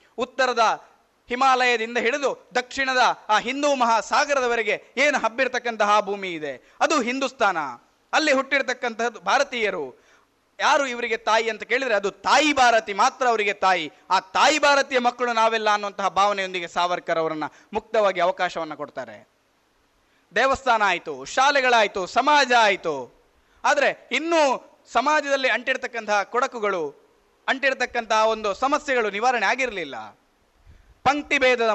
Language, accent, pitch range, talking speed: Kannada, native, 200-260 Hz, 105 wpm